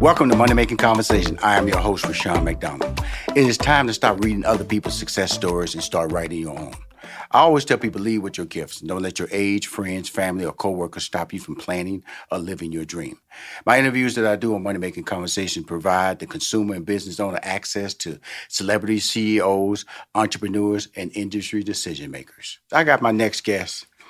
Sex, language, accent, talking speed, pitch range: male, English, American, 195 wpm, 105-140 Hz